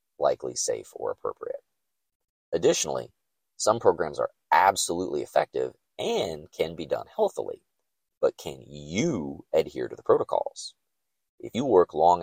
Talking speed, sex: 130 wpm, male